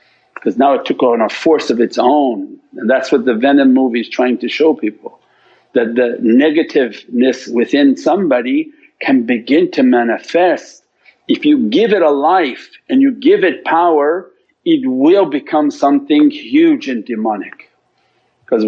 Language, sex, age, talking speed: English, male, 50-69, 155 wpm